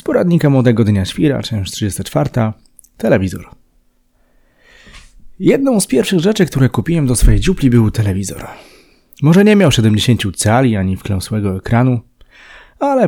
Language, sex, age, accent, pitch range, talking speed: Polish, male, 30-49, native, 105-145 Hz, 130 wpm